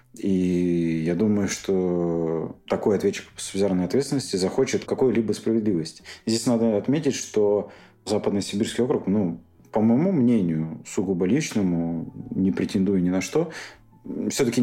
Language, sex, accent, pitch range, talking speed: Russian, male, native, 90-115 Hz, 125 wpm